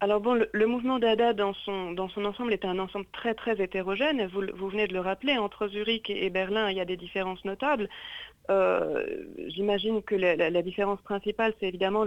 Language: French